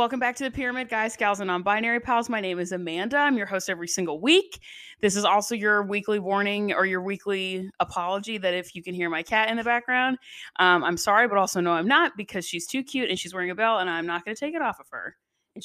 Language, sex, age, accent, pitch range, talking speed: English, female, 20-39, American, 180-235 Hz, 260 wpm